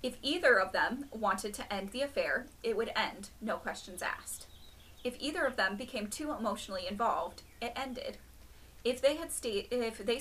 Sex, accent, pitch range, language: female, American, 200-260 Hz, English